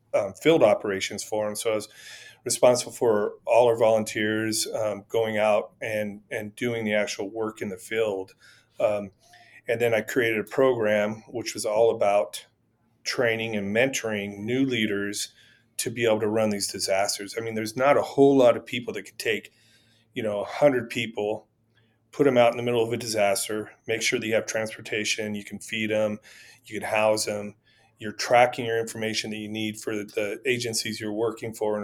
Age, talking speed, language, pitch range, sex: 30-49, 190 wpm, English, 105-120 Hz, male